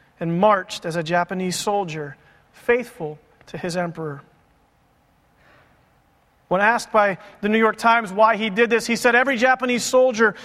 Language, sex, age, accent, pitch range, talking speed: English, male, 40-59, American, 180-235 Hz, 150 wpm